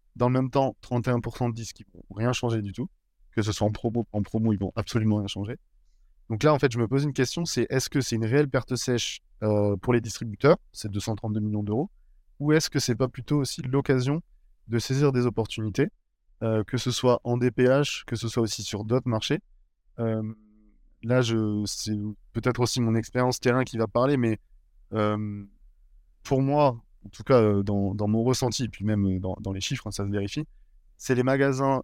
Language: French